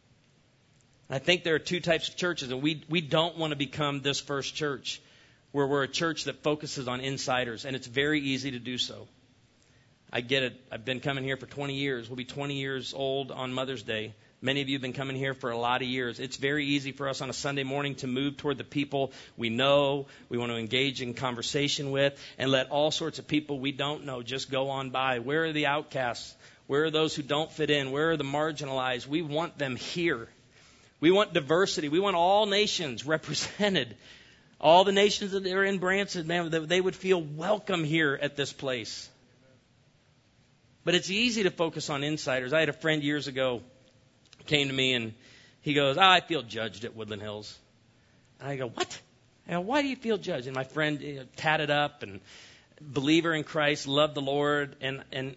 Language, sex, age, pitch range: English, male, 40-59, 130-155 Hz